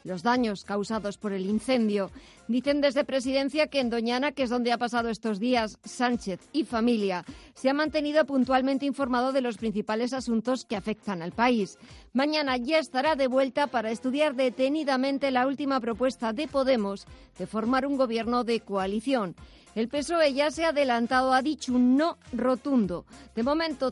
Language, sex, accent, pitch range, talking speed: Spanish, female, Spanish, 225-275 Hz, 170 wpm